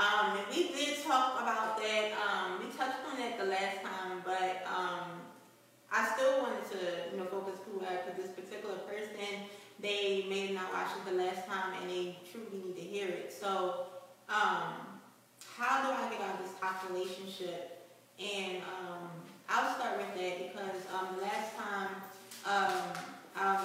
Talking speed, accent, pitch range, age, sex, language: 165 wpm, American, 185-210 Hz, 20-39, female, English